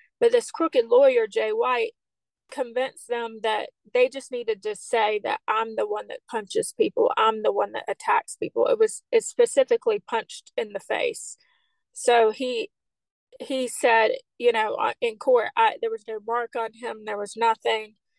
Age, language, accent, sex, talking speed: 30-49, English, American, female, 175 wpm